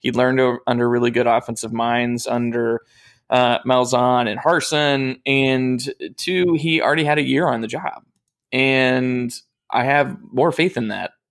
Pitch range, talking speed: 120-135 Hz, 155 wpm